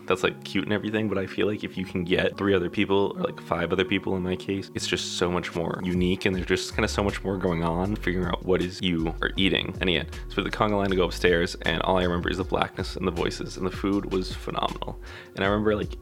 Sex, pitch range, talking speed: male, 90-95 Hz, 280 wpm